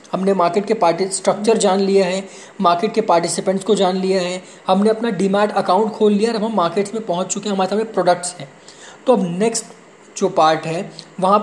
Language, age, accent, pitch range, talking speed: Hindi, 20-39, native, 180-220 Hz, 205 wpm